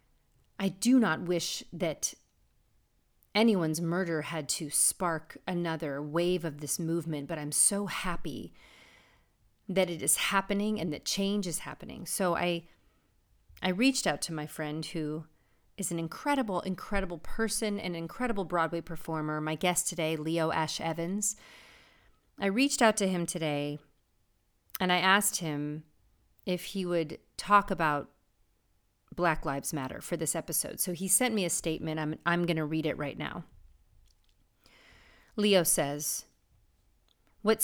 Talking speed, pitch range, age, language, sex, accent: 145 wpm, 160-200 Hz, 40-59, English, female, American